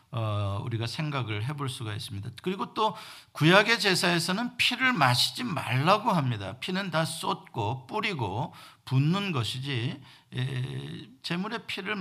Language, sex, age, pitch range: Korean, male, 50-69, 120-180 Hz